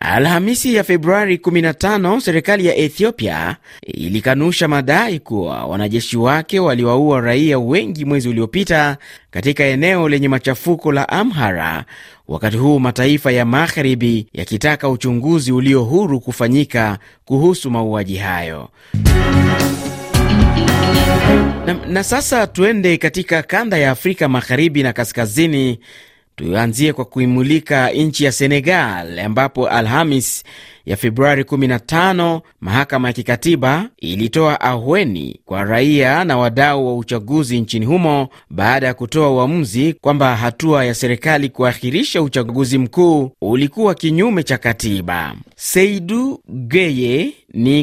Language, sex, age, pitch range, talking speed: Swahili, male, 30-49, 120-160 Hz, 110 wpm